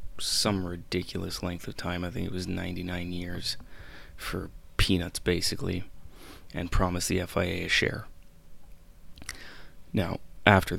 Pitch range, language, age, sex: 85-95 Hz, English, 20-39, male